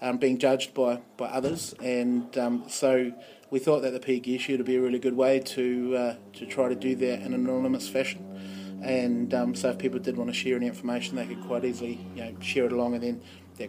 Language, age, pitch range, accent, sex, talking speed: English, 20-39, 120-130 Hz, Australian, male, 245 wpm